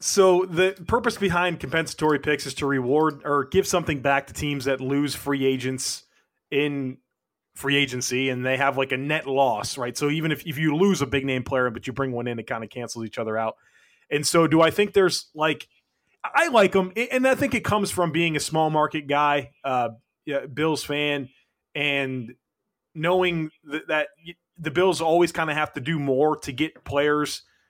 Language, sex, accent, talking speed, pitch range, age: English, male, American, 205 wpm, 135-165 Hz, 30-49